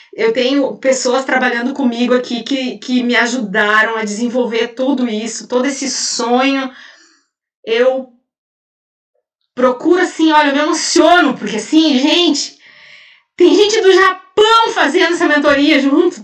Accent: Brazilian